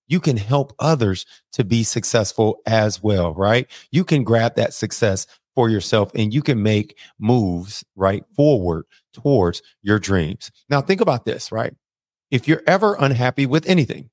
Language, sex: English, male